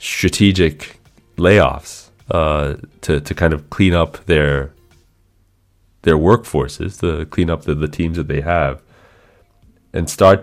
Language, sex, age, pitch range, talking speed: English, male, 30-49, 75-95 Hz, 125 wpm